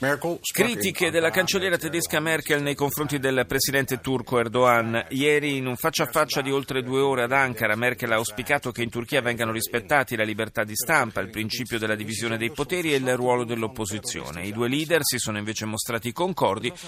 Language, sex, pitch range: Italian, male, 115-155 Hz